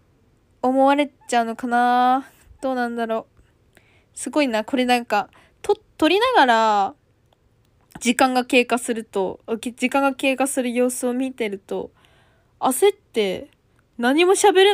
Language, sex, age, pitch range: Japanese, female, 20-39, 205-295 Hz